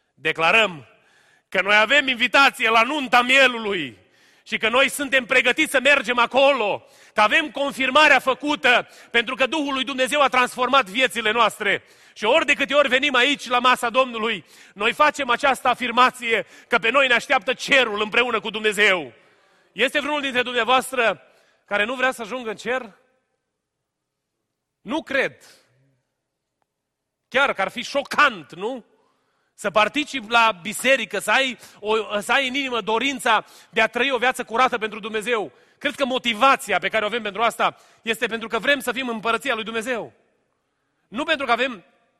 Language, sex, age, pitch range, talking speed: Romanian, male, 30-49, 215-265 Hz, 160 wpm